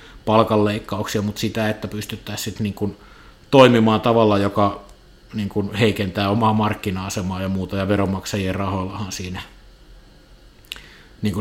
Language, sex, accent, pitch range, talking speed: Finnish, male, native, 100-115 Hz, 115 wpm